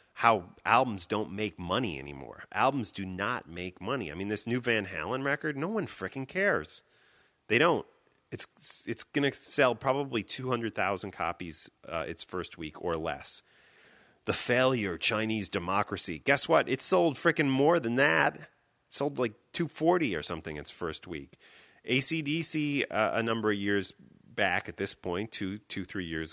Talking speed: 165 wpm